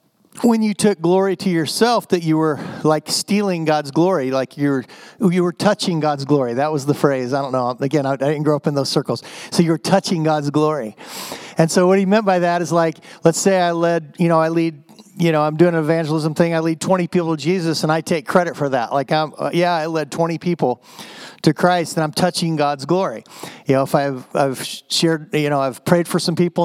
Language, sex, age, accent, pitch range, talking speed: English, male, 40-59, American, 140-175 Hz, 230 wpm